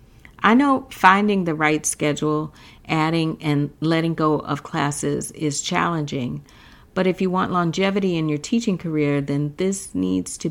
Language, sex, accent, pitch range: English, female, American, 150-195 Hz